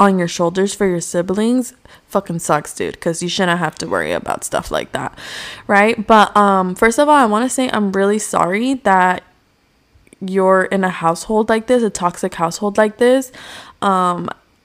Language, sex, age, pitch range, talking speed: English, female, 20-39, 175-210 Hz, 185 wpm